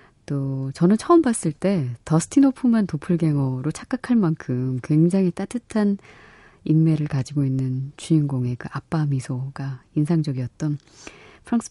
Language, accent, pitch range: Korean, native, 135-180 Hz